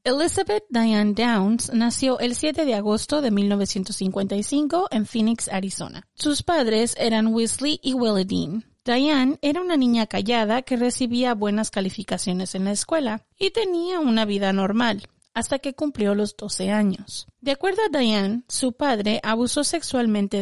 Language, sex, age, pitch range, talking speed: Spanish, female, 30-49, 210-280 Hz, 150 wpm